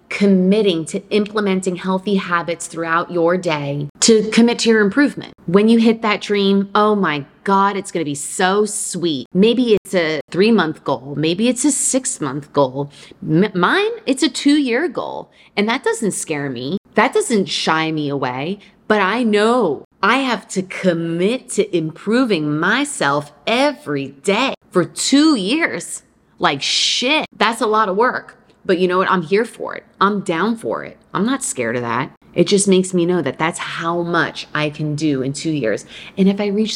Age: 30-49